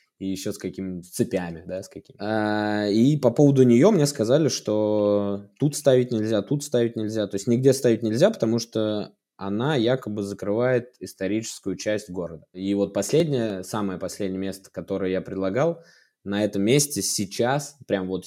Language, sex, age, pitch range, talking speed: Russian, male, 20-39, 95-115 Hz, 165 wpm